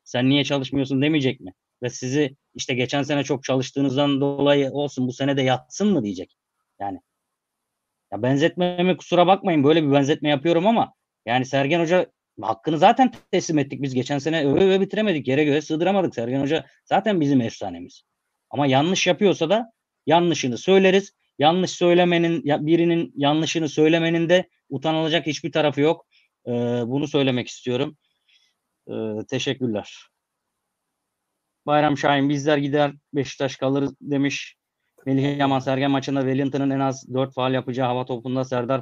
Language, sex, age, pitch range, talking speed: Turkish, male, 30-49, 125-150 Hz, 140 wpm